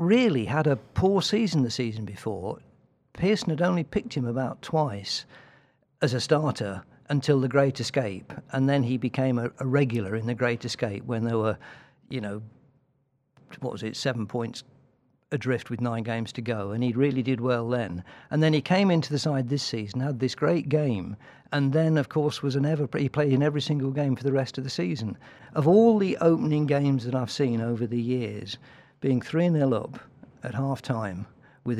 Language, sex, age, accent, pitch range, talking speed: English, male, 50-69, British, 120-145 Hz, 195 wpm